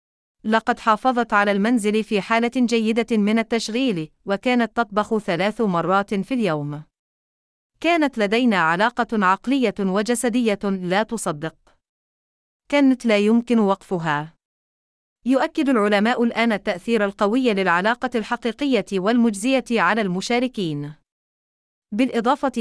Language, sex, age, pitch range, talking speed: Arabic, female, 30-49, 195-235 Hz, 100 wpm